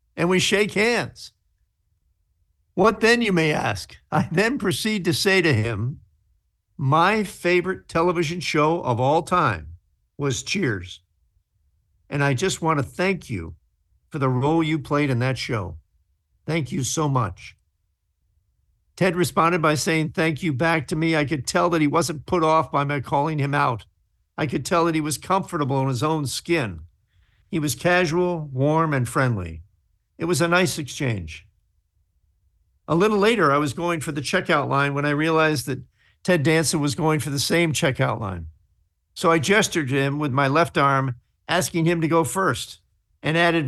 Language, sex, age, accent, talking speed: English, male, 50-69, American, 175 wpm